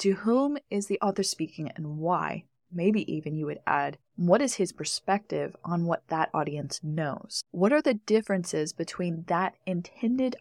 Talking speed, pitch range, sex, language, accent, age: 165 wpm, 160-195 Hz, female, English, American, 20-39